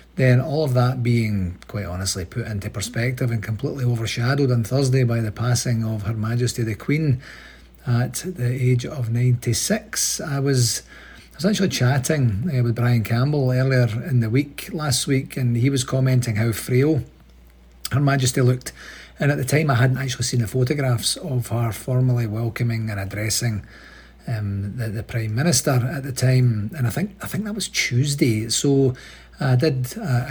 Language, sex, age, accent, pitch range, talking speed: English, male, 40-59, British, 110-130 Hz, 180 wpm